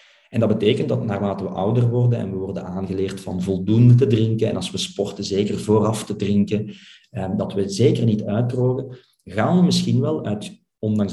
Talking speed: 195 wpm